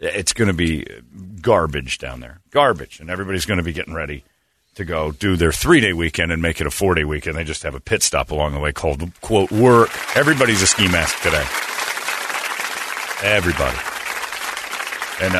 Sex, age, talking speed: male, 40-59, 180 wpm